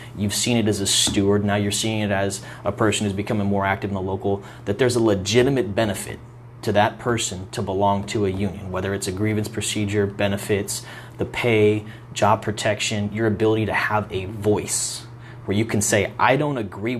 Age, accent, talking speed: 30-49, American, 200 wpm